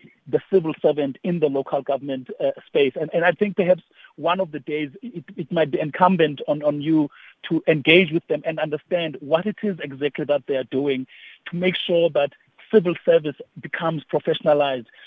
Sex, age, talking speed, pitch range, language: male, 50-69, 190 wpm, 150-180 Hz, English